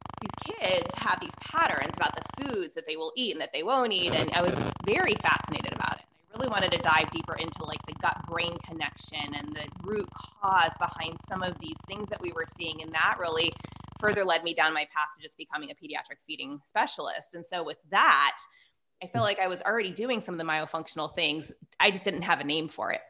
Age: 20-39